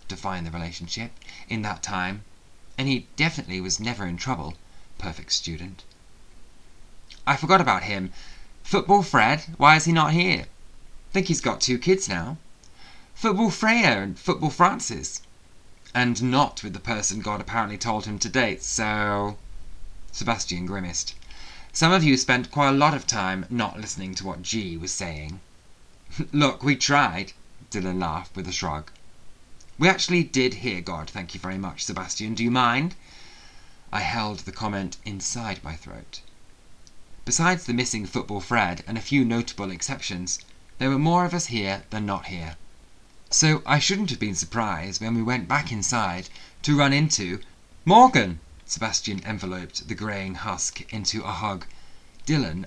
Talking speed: 155 wpm